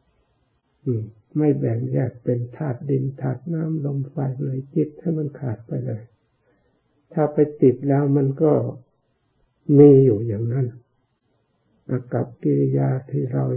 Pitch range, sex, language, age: 115-140 Hz, male, Thai, 60-79